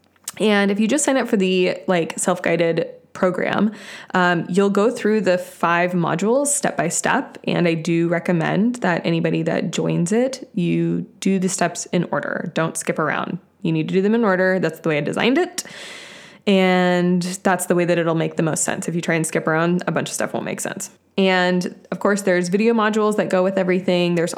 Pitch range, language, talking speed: 170-200 Hz, English, 205 wpm